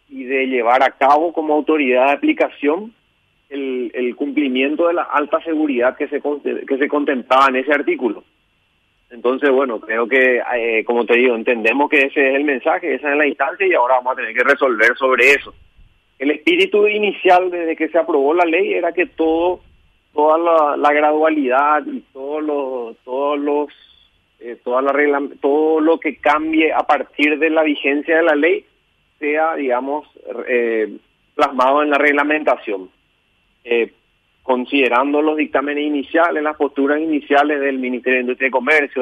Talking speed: 170 wpm